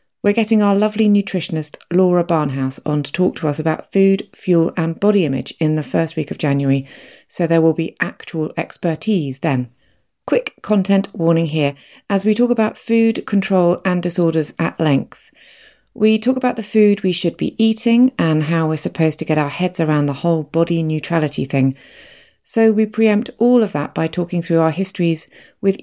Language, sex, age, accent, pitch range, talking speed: English, female, 30-49, British, 150-210 Hz, 185 wpm